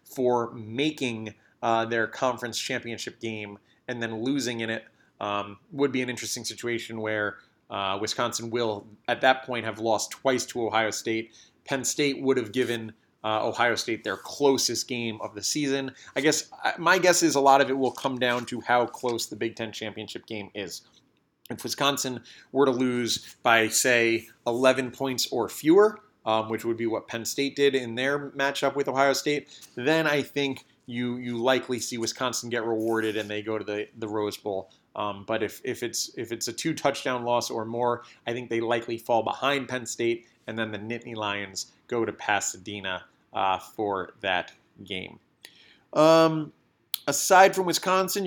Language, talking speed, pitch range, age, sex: English, 180 wpm, 115-135 Hz, 30-49, male